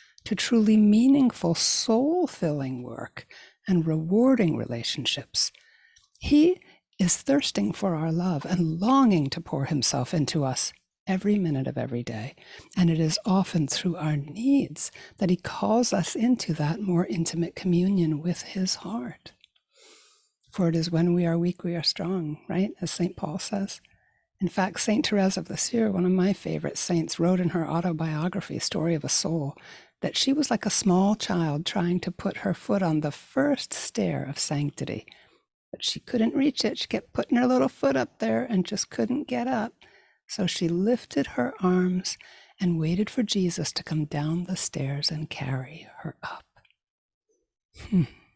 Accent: American